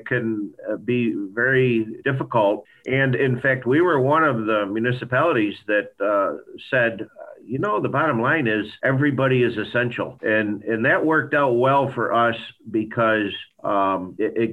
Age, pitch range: 50-69, 110-135 Hz